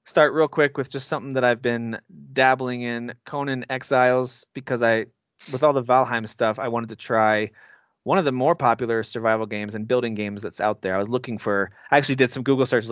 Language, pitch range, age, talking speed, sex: English, 110-135 Hz, 30-49, 220 wpm, male